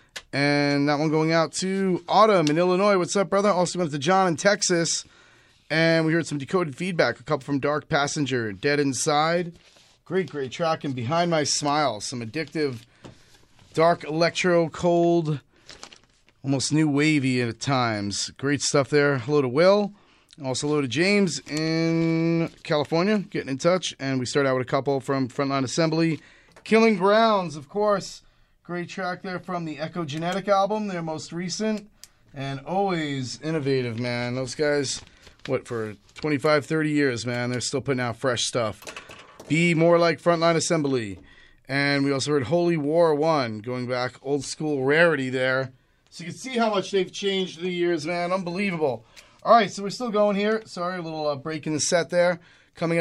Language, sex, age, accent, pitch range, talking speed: English, male, 30-49, American, 140-175 Hz, 170 wpm